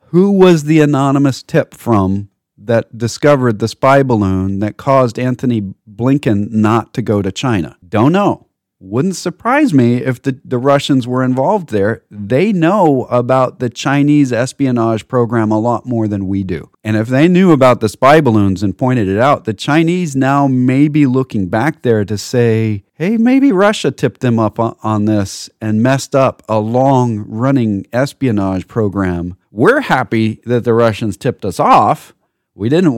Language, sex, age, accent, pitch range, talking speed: English, male, 40-59, American, 105-135 Hz, 170 wpm